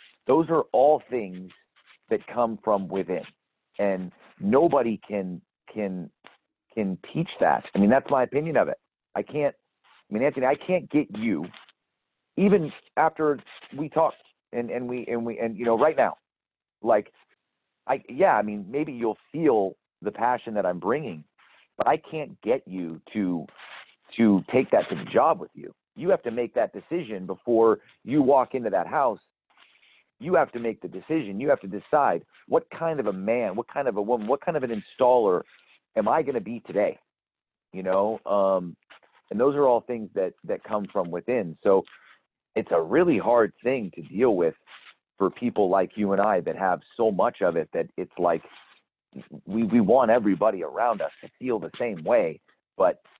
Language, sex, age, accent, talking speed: English, male, 40-59, American, 185 wpm